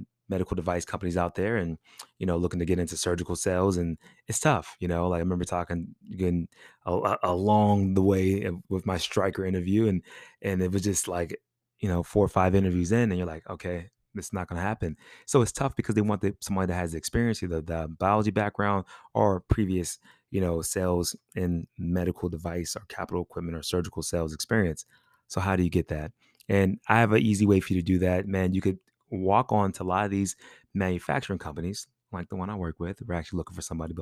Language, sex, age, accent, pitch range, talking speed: English, male, 20-39, American, 90-105 Hz, 220 wpm